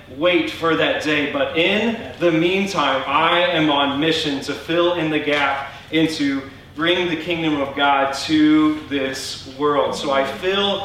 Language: English